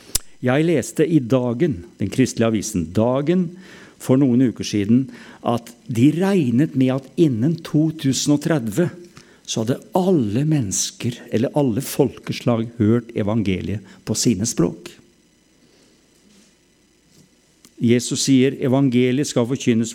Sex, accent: male, Norwegian